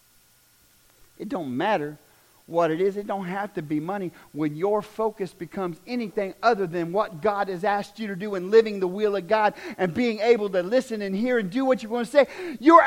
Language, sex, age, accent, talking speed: English, male, 50-69, American, 220 wpm